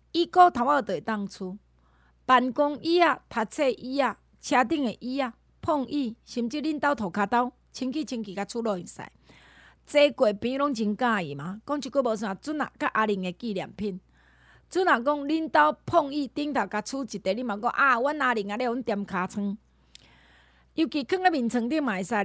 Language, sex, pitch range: Chinese, female, 205-280 Hz